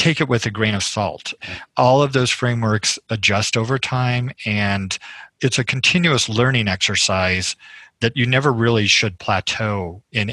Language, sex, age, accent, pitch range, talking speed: English, male, 40-59, American, 105-130 Hz, 155 wpm